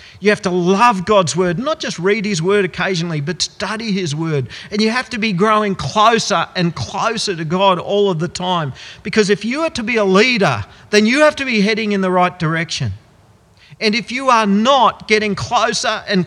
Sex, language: male, English